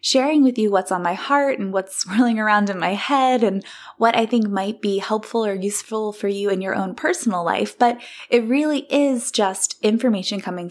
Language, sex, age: English, female, 20-39